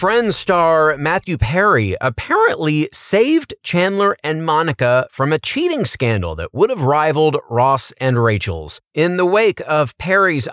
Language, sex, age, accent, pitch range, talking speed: English, male, 30-49, American, 115-155 Hz, 140 wpm